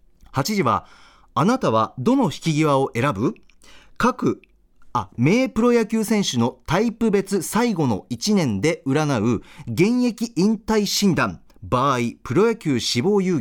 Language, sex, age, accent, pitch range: Japanese, male, 40-59, native, 130-205 Hz